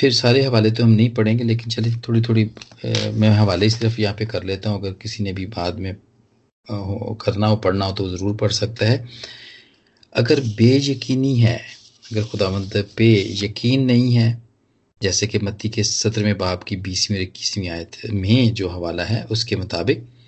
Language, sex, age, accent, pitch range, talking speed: Hindi, male, 40-59, native, 105-120 Hz, 180 wpm